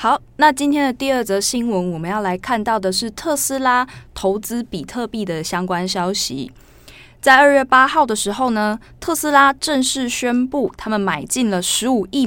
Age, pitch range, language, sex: 20-39, 190-265 Hz, Chinese, female